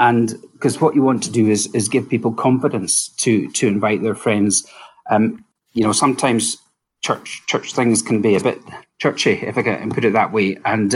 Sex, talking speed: male, 195 wpm